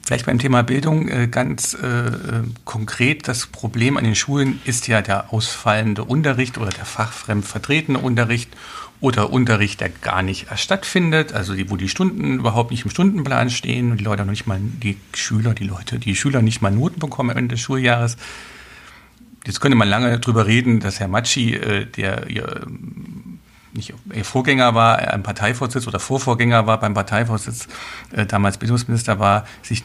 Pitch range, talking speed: 105-125 Hz, 175 wpm